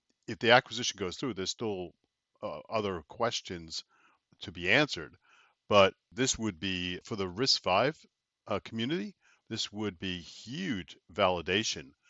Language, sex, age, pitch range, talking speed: English, male, 50-69, 90-110 Hz, 135 wpm